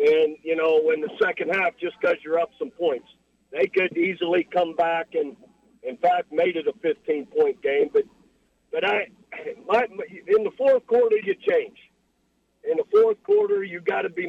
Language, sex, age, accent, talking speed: English, male, 50-69, American, 190 wpm